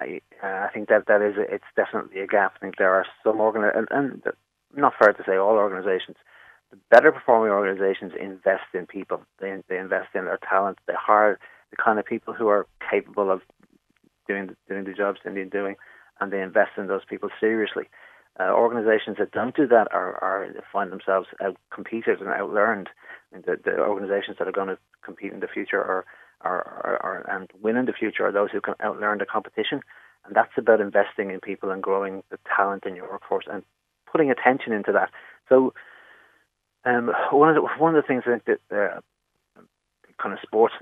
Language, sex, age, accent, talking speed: English, male, 30-49, Irish, 205 wpm